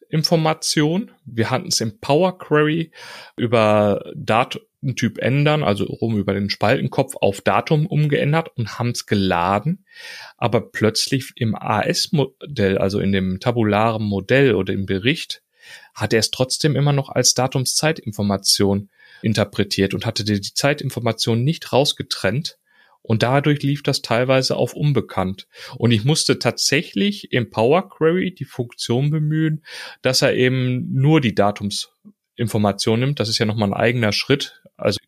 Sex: male